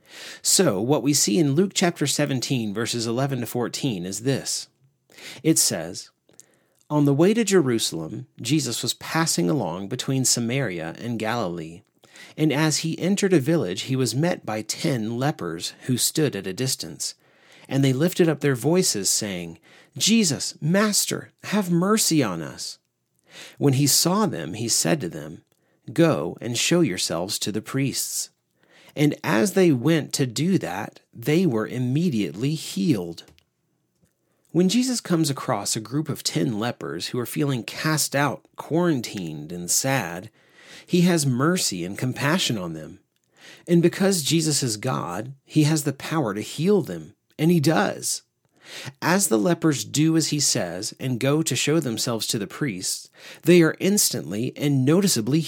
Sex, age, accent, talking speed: male, 40-59, American, 155 wpm